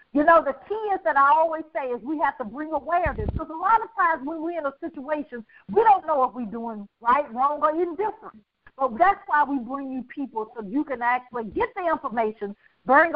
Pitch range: 240-310 Hz